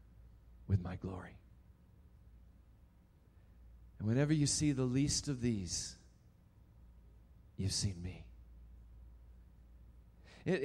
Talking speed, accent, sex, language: 85 wpm, American, male, English